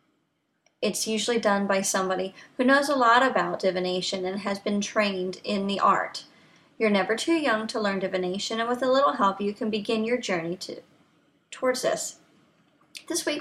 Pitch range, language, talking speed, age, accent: 190-245 Hz, English, 180 wpm, 30-49, American